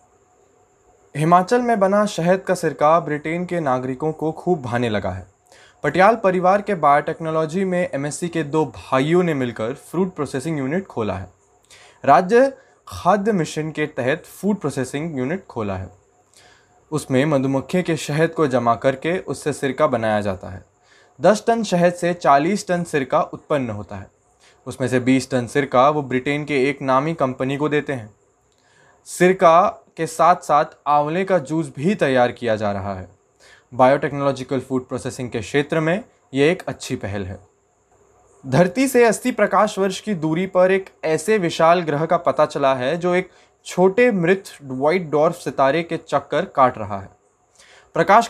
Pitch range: 130-175 Hz